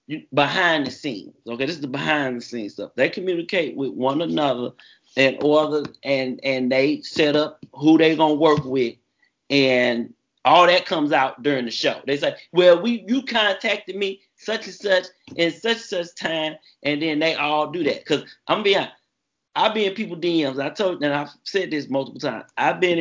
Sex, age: male, 30-49